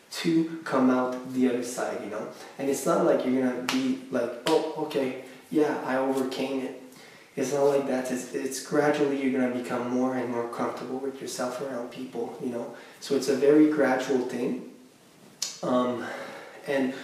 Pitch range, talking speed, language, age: 125-140 Hz, 175 wpm, English, 20-39